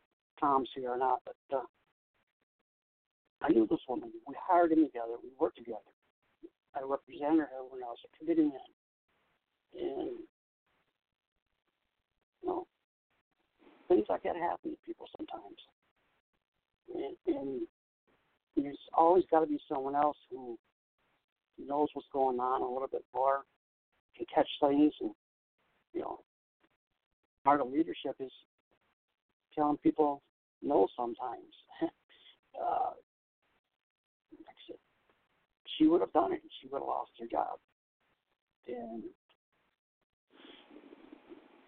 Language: English